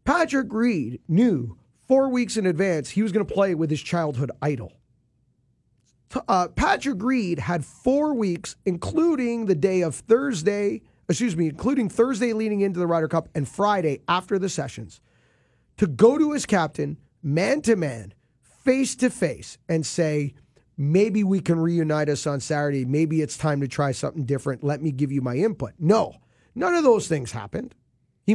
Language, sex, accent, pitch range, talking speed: English, male, American, 150-205 Hz, 165 wpm